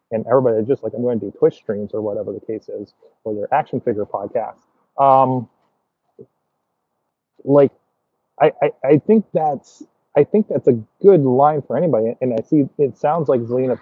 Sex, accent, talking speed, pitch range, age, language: male, American, 185 wpm, 115-170 Hz, 30-49, English